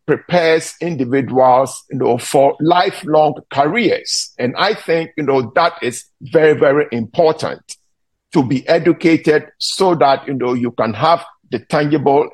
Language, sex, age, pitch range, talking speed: English, male, 50-69, 135-170 Hz, 140 wpm